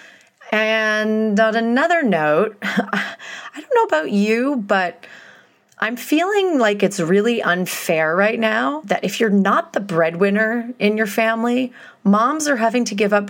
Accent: American